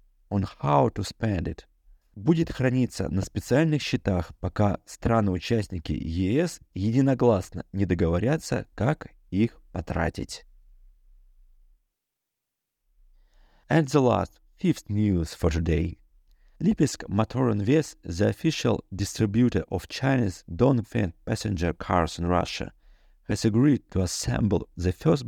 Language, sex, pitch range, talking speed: Russian, male, 90-115 Hz, 100 wpm